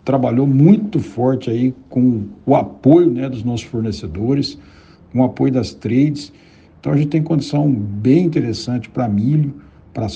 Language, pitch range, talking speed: Portuguese, 115-140 Hz, 155 wpm